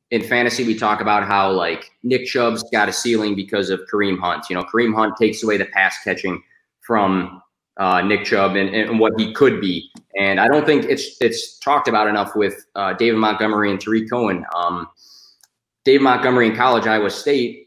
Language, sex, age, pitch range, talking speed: English, male, 20-39, 100-120 Hz, 195 wpm